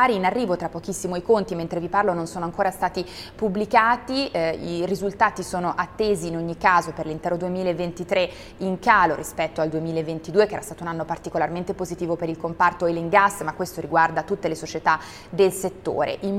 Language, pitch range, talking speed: Italian, 165-200 Hz, 185 wpm